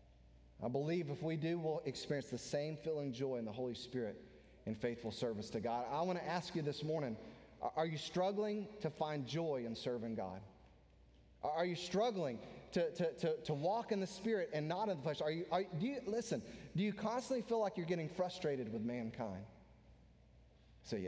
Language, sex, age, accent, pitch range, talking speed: English, male, 30-49, American, 115-170 Hz, 195 wpm